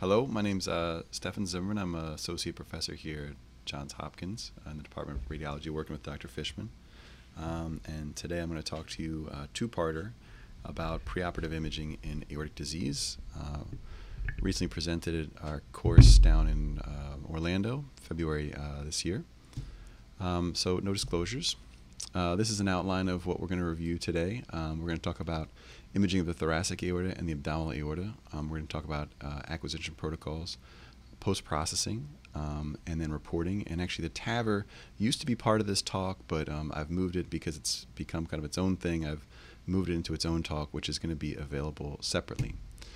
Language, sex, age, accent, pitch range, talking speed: English, male, 30-49, American, 75-90 Hz, 190 wpm